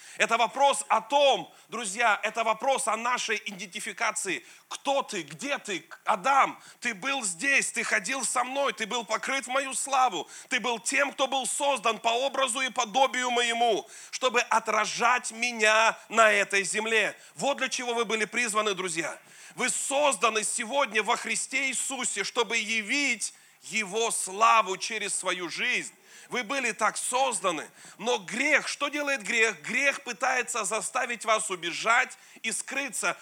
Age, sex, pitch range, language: 30-49, male, 210-255 Hz, Russian